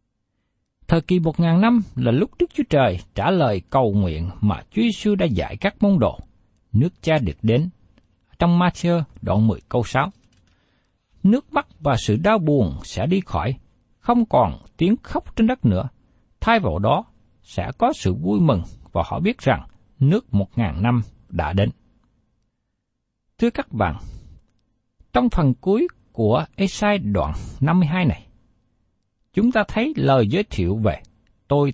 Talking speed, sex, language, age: 160 wpm, male, Vietnamese, 60-79